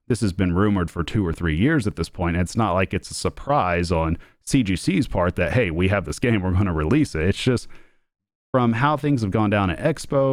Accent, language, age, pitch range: American, English, 40-59, 90-130 Hz